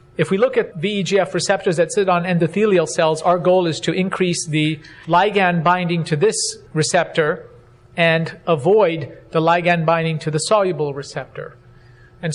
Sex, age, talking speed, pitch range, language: male, 50-69, 155 wpm, 160-190 Hz, English